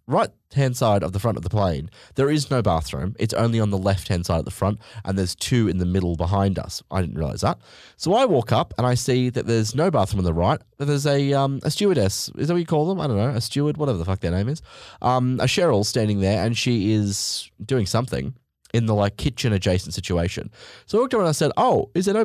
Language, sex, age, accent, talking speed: English, male, 20-39, Australian, 265 wpm